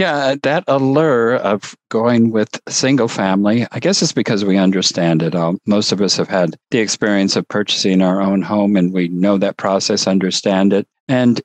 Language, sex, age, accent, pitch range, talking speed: English, male, 50-69, American, 85-105 Hz, 185 wpm